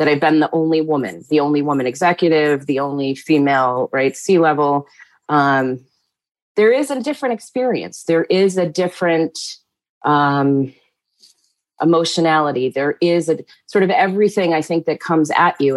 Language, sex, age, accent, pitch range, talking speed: English, female, 30-49, American, 145-170 Hz, 145 wpm